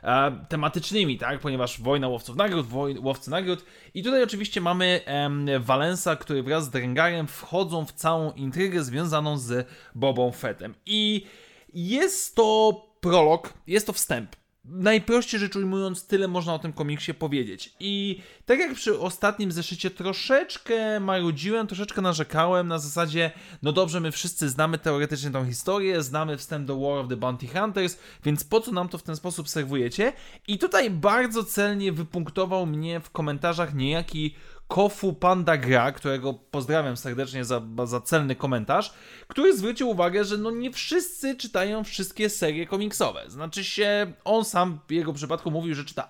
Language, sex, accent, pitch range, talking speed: Polish, male, native, 150-195 Hz, 155 wpm